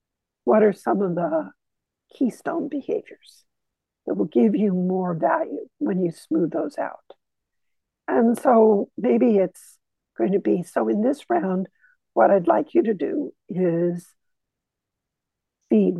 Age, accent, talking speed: 60-79, American, 140 wpm